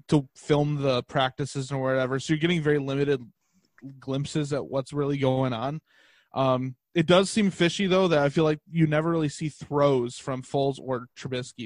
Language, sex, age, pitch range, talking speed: English, male, 20-39, 135-160 Hz, 185 wpm